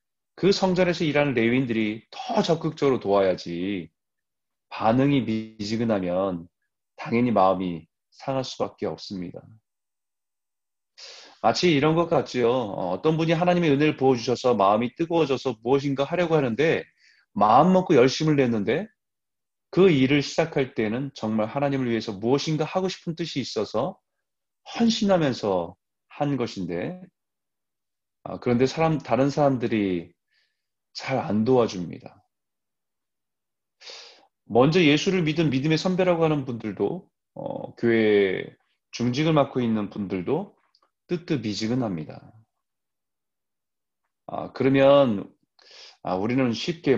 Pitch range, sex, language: 105-150 Hz, male, Korean